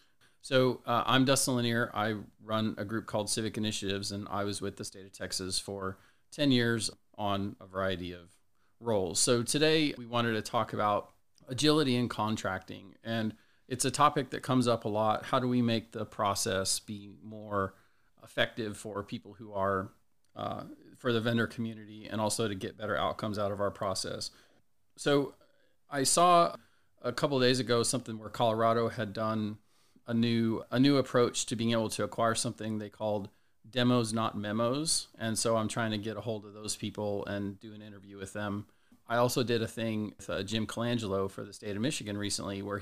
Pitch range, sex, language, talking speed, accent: 105-120 Hz, male, English, 190 wpm, American